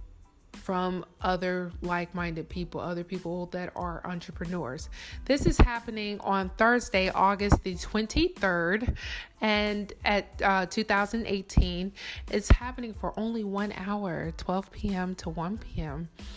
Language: English